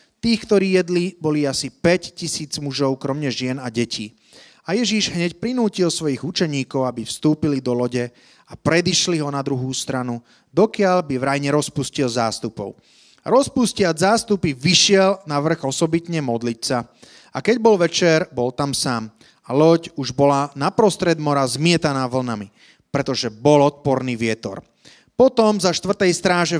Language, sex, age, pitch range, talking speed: Slovak, male, 30-49, 135-185 Hz, 140 wpm